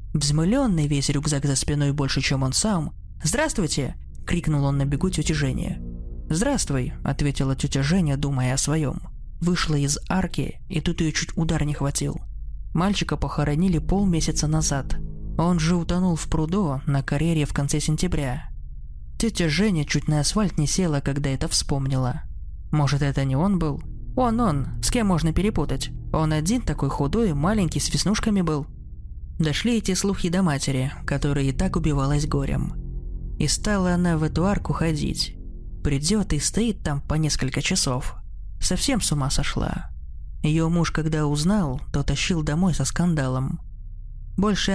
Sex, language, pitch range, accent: male, Russian, 135-175 Hz, native